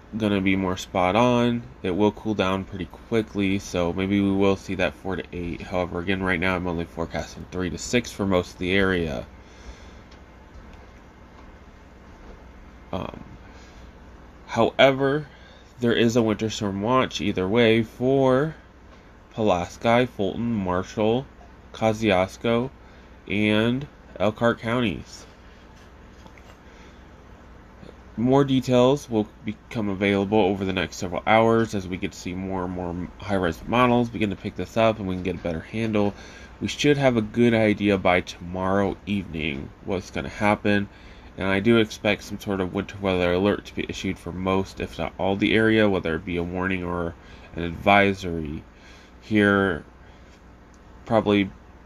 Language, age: English, 20-39